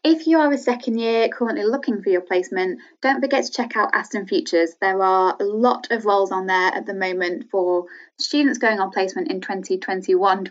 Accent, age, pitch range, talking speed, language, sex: British, 10-29, 200-295 Hz, 205 wpm, English, female